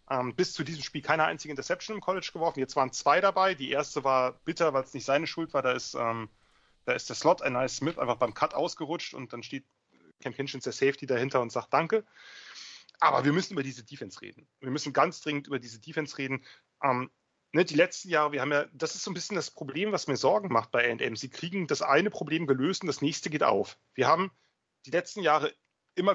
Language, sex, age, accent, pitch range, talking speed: English, male, 30-49, German, 135-185 Hz, 235 wpm